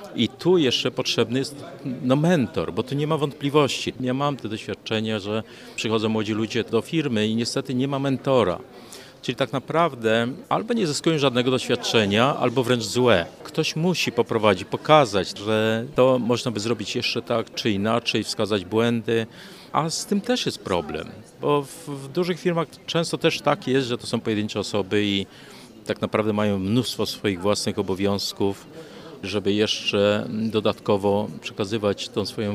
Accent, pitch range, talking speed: native, 110-135 Hz, 160 wpm